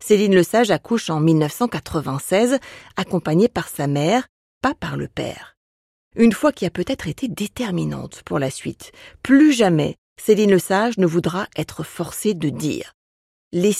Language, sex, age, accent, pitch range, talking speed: French, female, 40-59, French, 165-235 Hz, 155 wpm